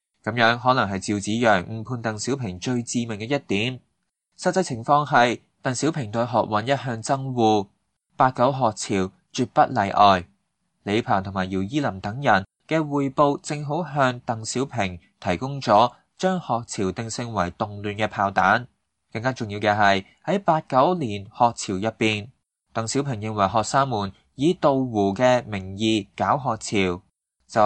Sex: male